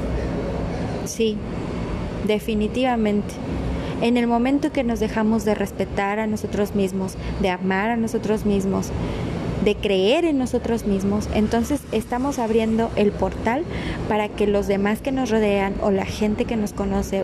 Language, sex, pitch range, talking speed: Spanish, female, 195-250 Hz, 145 wpm